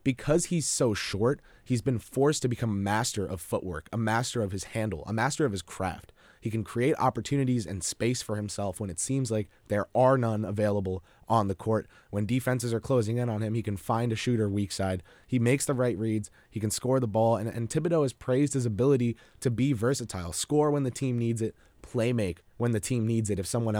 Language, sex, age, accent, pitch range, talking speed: English, male, 20-39, American, 100-120 Hz, 225 wpm